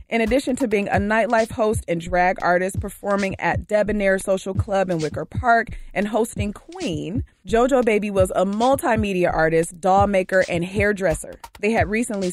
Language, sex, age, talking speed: English, female, 20-39, 165 wpm